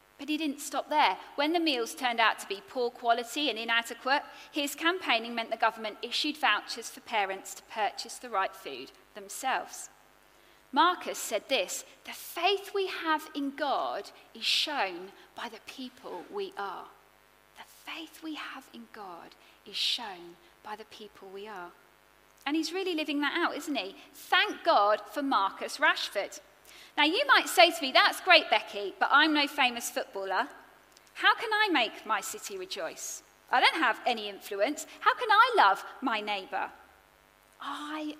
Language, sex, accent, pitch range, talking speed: English, female, British, 225-345 Hz, 165 wpm